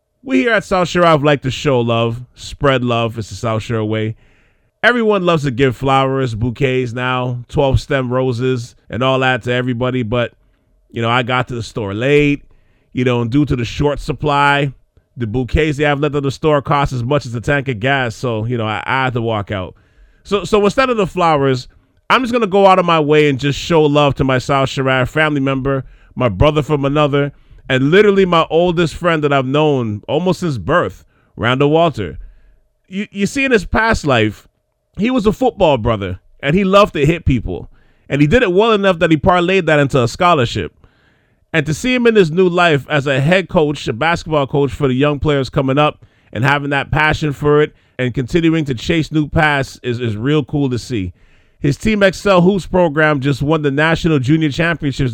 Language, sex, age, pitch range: English, male, 30-49, 125-160 Hz